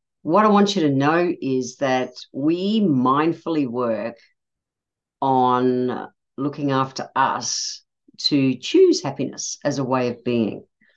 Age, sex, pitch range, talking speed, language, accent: 50-69, female, 140-190 Hz, 125 wpm, English, Australian